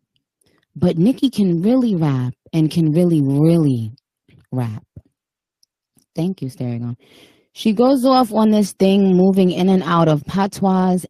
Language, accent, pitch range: English, American, 140-190 Hz